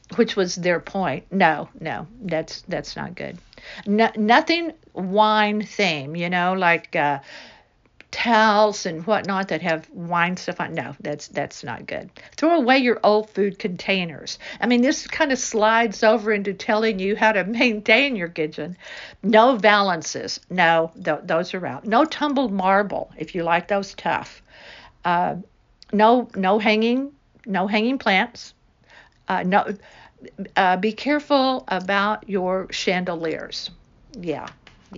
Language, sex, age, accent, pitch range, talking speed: English, female, 50-69, American, 175-230 Hz, 140 wpm